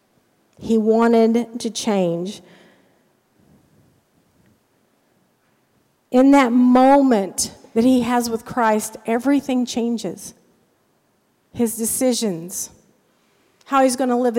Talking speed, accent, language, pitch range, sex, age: 90 wpm, American, English, 200-255 Hz, female, 40-59